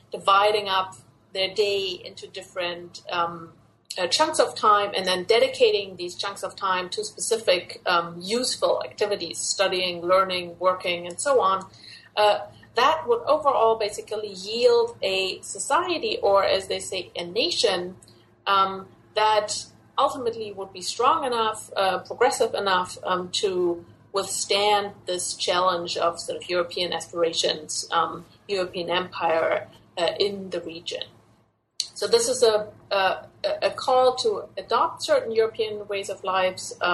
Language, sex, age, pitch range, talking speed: English, female, 30-49, 180-230 Hz, 135 wpm